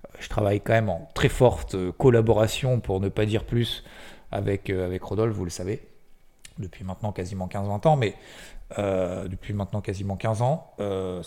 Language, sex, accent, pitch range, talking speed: French, male, French, 95-115 Hz, 170 wpm